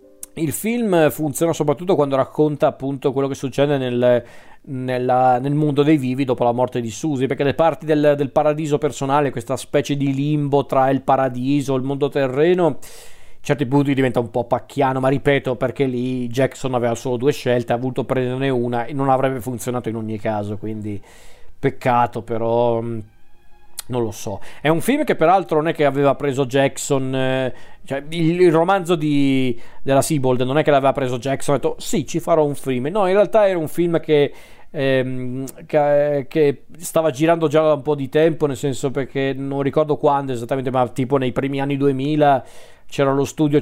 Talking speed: 185 wpm